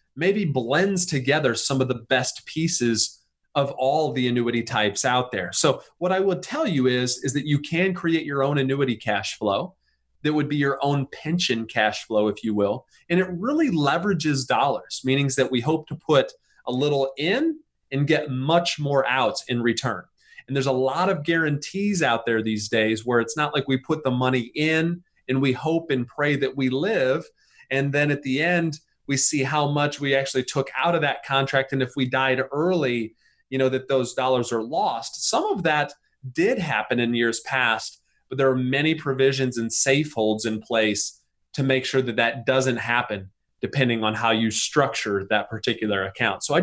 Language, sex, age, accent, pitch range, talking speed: English, male, 30-49, American, 120-150 Hz, 195 wpm